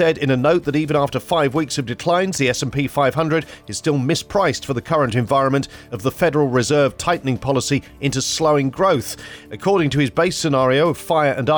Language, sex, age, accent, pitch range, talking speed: English, male, 40-59, British, 130-165 Hz, 195 wpm